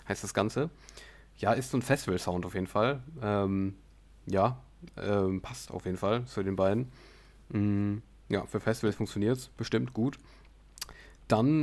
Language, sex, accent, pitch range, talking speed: German, male, German, 100-120 Hz, 155 wpm